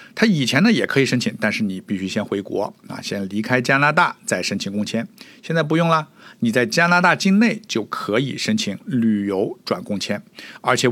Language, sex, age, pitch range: Chinese, male, 60-79, 110-170 Hz